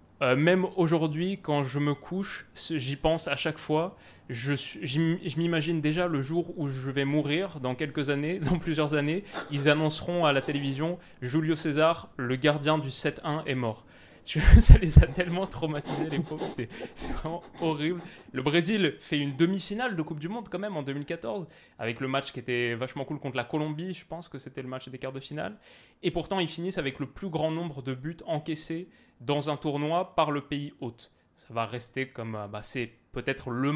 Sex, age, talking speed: male, 20-39, 205 wpm